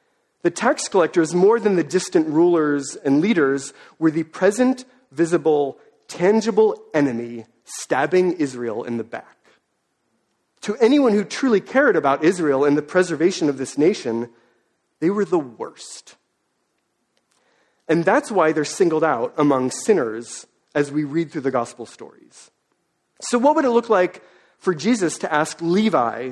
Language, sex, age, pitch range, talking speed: English, male, 40-59, 140-220 Hz, 145 wpm